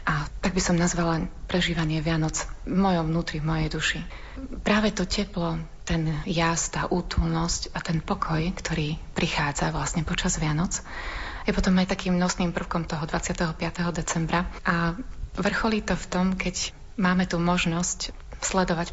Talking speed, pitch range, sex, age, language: 145 wpm, 160-185 Hz, female, 30-49, Slovak